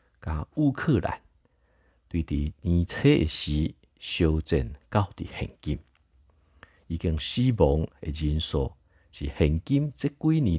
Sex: male